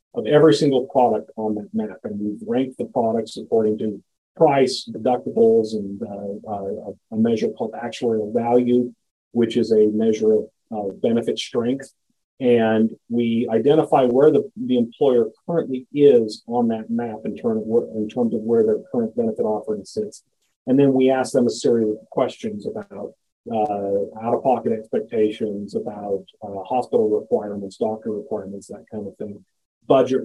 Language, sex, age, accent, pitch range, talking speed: English, male, 40-59, American, 110-130 Hz, 155 wpm